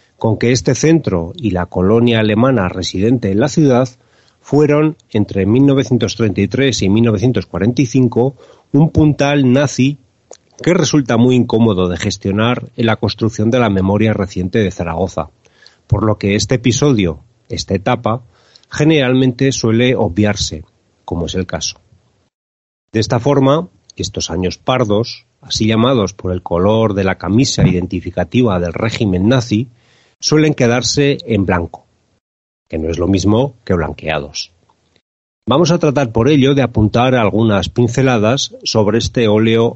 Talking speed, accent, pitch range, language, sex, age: 135 wpm, Spanish, 95-130 Hz, Spanish, male, 40-59